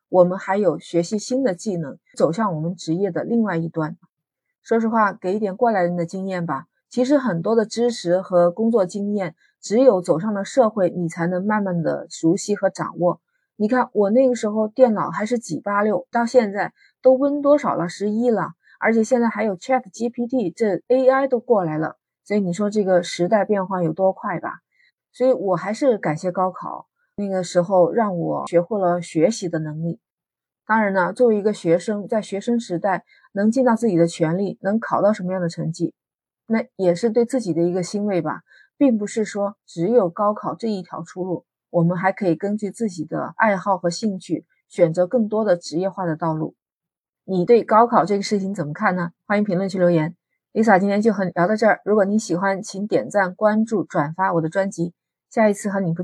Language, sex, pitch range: Chinese, female, 175-220 Hz